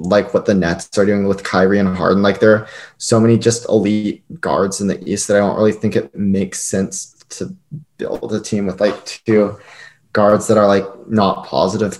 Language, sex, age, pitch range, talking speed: English, male, 20-39, 95-115 Hz, 210 wpm